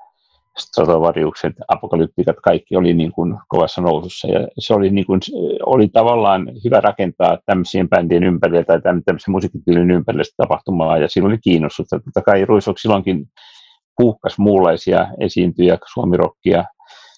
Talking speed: 125 wpm